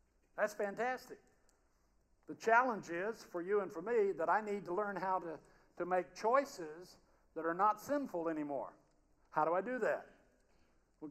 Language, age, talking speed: English, 60-79, 165 wpm